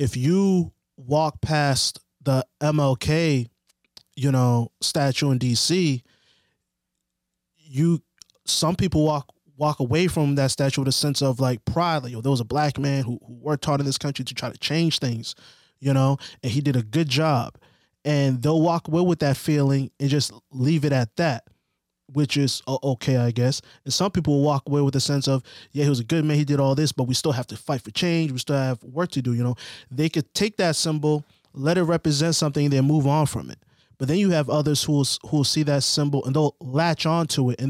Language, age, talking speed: English, 20-39, 225 wpm